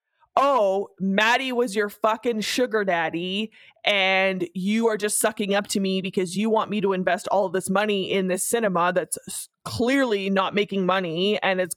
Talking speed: 180 wpm